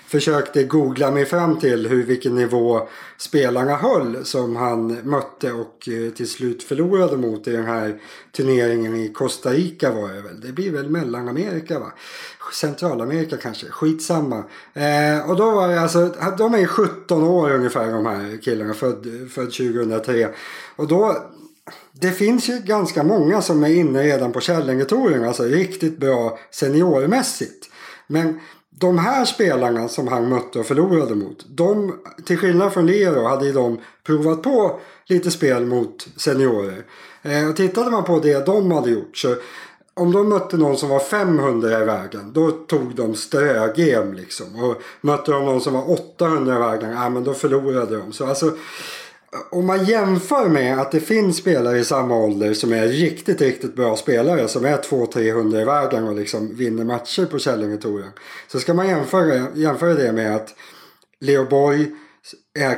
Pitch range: 120-170 Hz